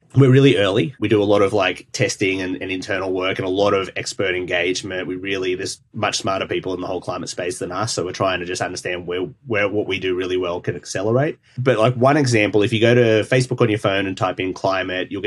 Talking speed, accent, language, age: 255 wpm, Australian, English, 30-49